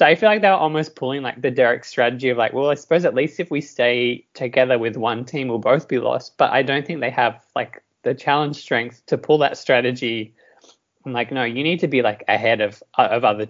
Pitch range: 120-140 Hz